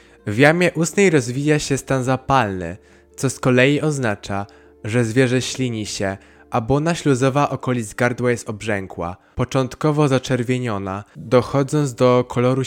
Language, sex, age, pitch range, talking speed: Polish, male, 20-39, 105-140 Hz, 130 wpm